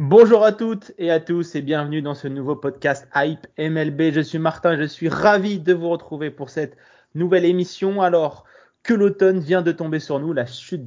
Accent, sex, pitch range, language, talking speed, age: French, male, 130-175 Hz, French, 205 wpm, 20-39